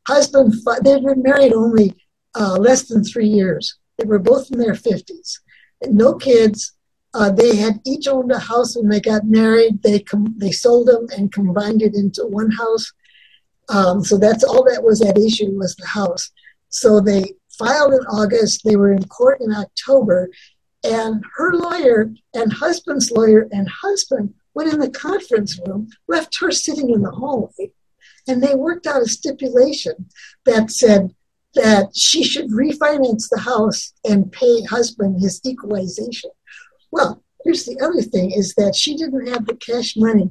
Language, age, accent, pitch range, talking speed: English, 60-79, American, 210-270 Hz, 170 wpm